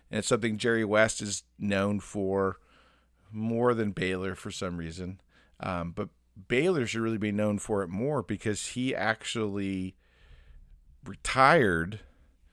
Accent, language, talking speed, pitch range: American, English, 135 wpm, 95-120 Hz